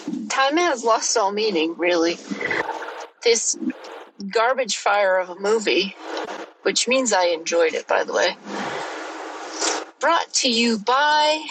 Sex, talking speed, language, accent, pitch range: female, 125 wpm, English, American, 185-270 Hz